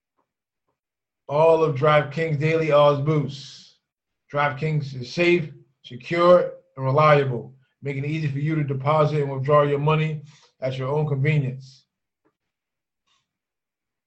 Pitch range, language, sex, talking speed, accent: 145-160 Hz, English, male, 125 wpm, American